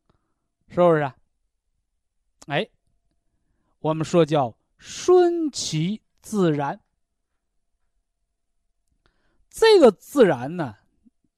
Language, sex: Chinese, male